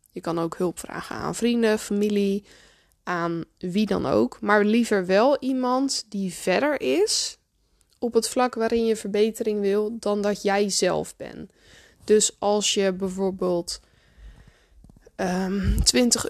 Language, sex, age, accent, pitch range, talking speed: Dutch, female, 20-39, Dutch, 185-225 Hz, 135 wpm